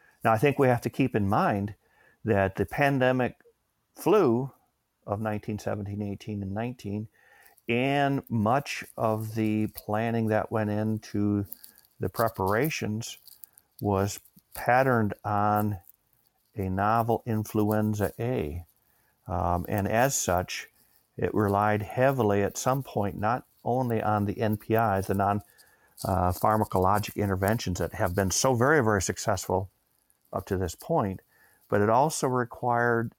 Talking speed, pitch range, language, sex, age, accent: 125 wpm, 95-115 Hz, English, male, 50-69, American